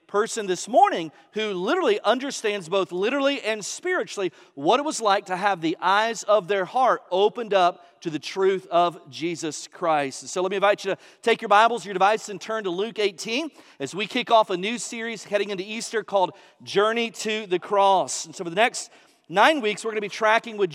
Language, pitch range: English, 185-230 Hz